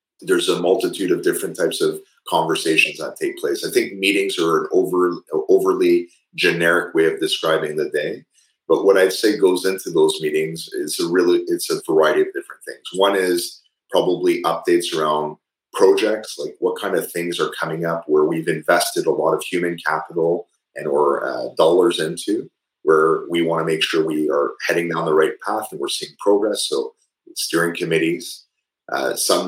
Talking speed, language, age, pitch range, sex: 185 wpm, English, 30-49, 360-430 Hz, male